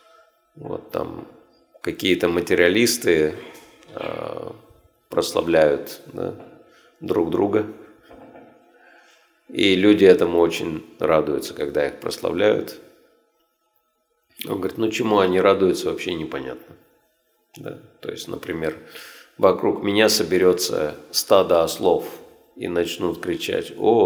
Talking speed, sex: 85 wpm, male